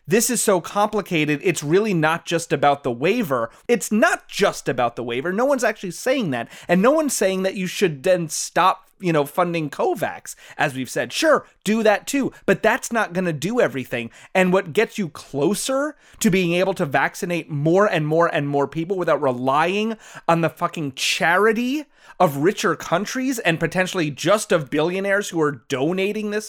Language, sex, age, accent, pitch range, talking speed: English, male, 30-49, American, 155-215 Hz, 190 wpm